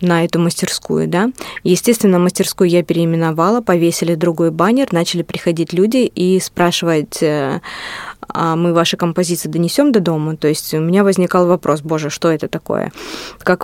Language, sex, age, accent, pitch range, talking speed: Russian, female, 20-39, native, 170-190 Hz, 150 wpm